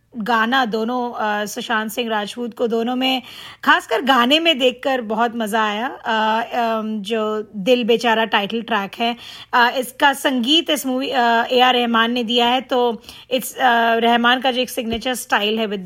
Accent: native